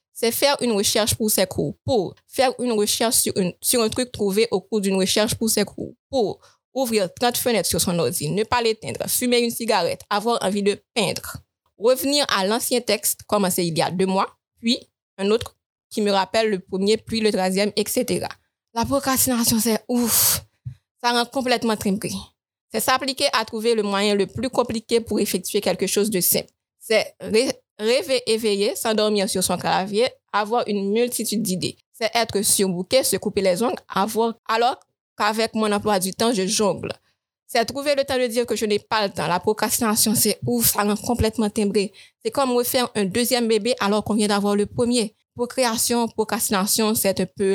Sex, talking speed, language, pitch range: female, 195 wpm, French, 200-235 Hz